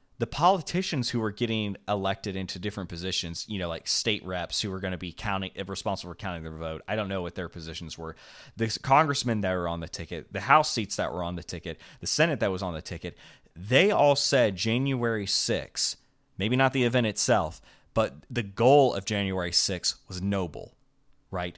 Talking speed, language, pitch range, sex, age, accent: 205 wpm, English, 95-125 Hz, male, 30-49, American